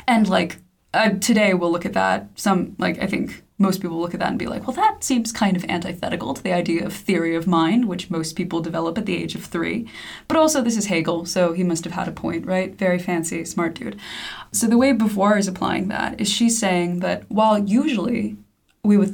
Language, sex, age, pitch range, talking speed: English, female, 20-39, 175-220 Hz, 230 wpm